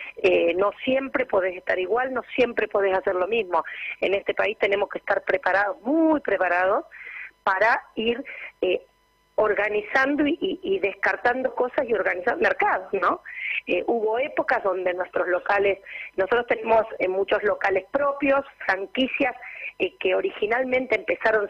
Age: 40-59